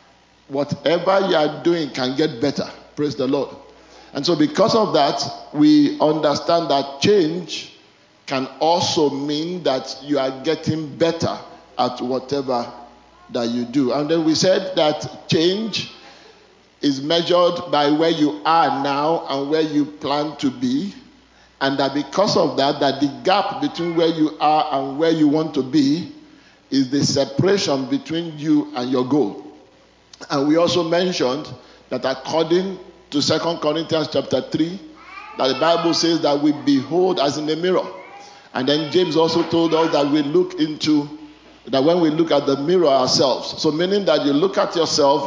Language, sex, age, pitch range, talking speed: English, male, 50-69, 140-175 Hz, 165 wpm